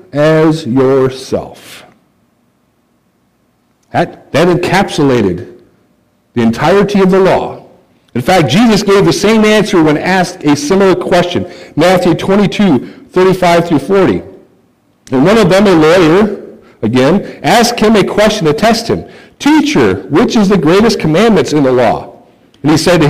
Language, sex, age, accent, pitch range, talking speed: English, male, 50-69, American, 150-210 Hz, 135 wpm